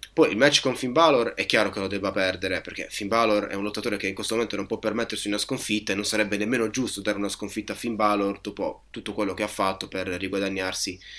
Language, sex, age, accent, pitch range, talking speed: Italian, male, 20-39, native, 100-130 Hz, 245 wpm